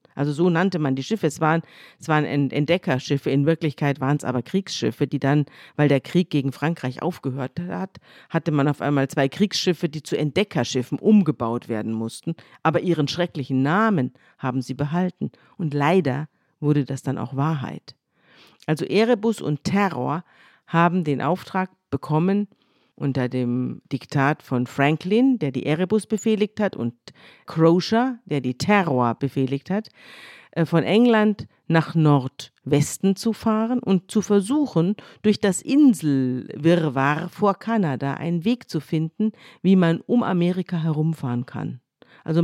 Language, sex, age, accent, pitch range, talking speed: German, female, 50-69, German, 140-195 Hz, 145 wpm